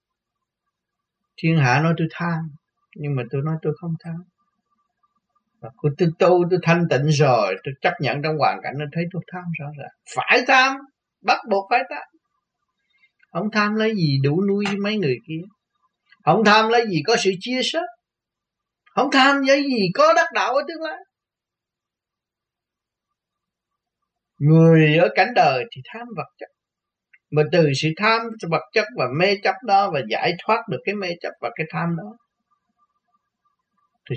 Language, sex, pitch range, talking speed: Vietnamese, male, 160-235 Hz, 170 wpm